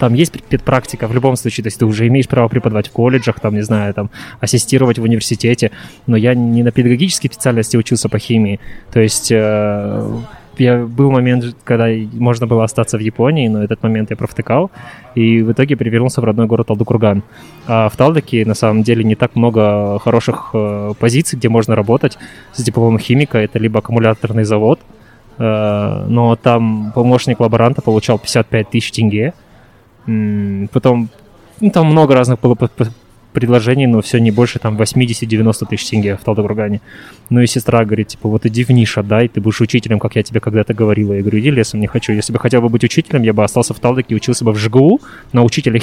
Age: 20-39